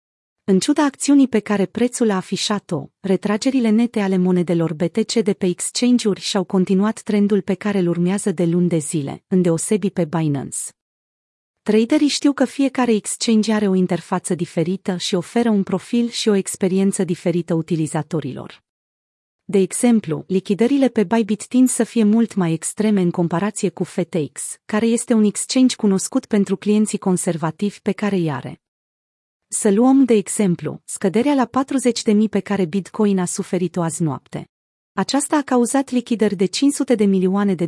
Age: 30-49